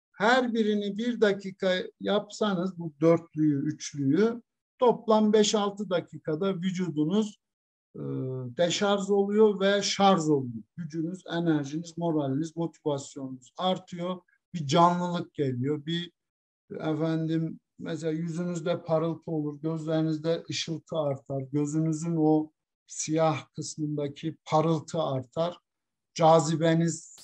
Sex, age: male, 60-79